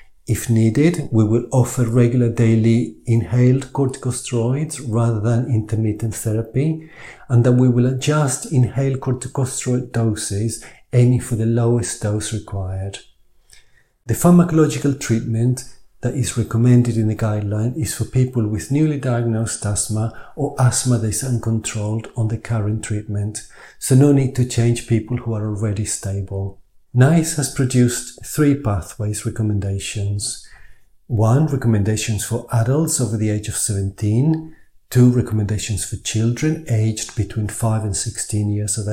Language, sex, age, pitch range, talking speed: English, male, 50-69, 110-130 Hz, 135 wpm